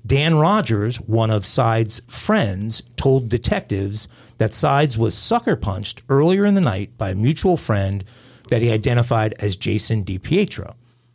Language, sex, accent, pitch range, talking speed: English, male, American, 110-135 Hz, 140 wpm